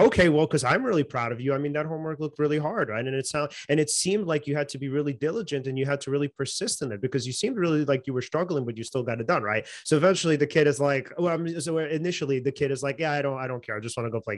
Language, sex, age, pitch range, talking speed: English, male, 30-49, 140-175 Hz, 325 wpm